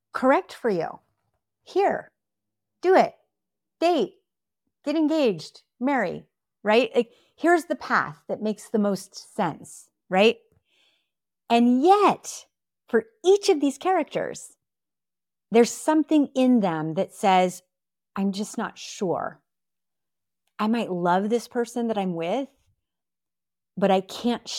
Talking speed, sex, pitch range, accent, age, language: 120 wpm, female, 180-260 Hz, American, 40-59, English